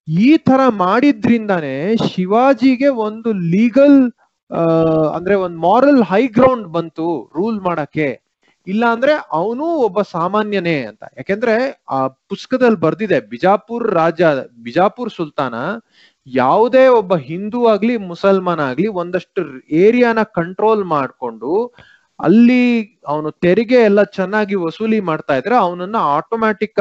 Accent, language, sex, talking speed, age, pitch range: native, Kannada, male, 105 wpm, 30-49, 170-240 Hz